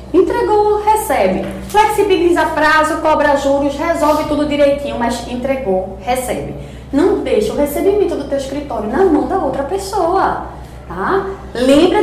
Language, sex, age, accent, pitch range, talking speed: Portuguese, female, 20-39, Brazilian, 245-360 Hz, 130 wpm